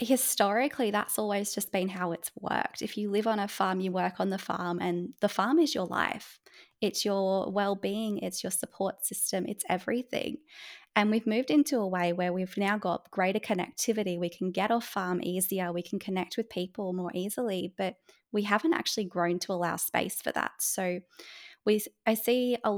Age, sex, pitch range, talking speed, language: 20-39, female, 185-225 Hz, 195 wpm, English